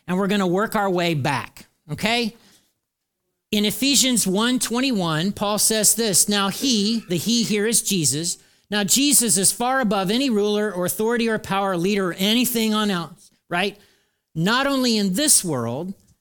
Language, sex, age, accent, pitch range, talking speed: English, male, 40-59, American, 175-225 Hz, 165 wpm